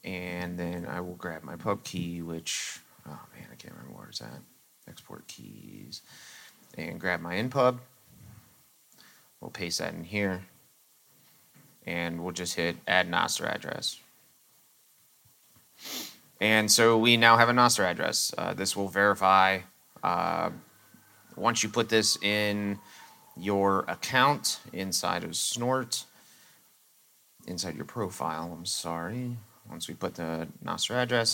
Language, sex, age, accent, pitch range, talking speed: English, male, 30-49, American, 90-110 Hz, 130 wpm